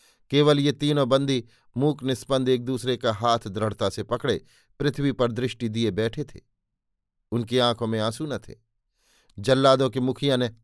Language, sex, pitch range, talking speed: Hindi, male, 115-145 Hz, 165 wpm